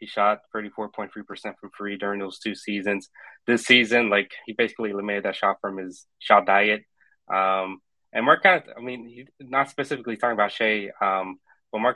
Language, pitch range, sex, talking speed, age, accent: English, 100-110 Hz, male, 185 wpm, 20-39, American